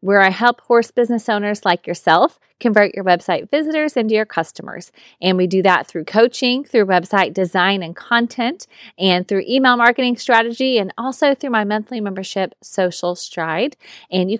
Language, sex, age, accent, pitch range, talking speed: English, female, 30-49, American, 195-250 Hz, 170 wpm